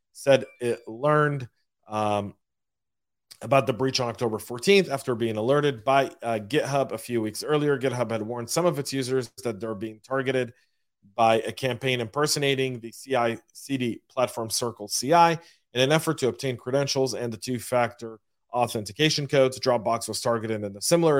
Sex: male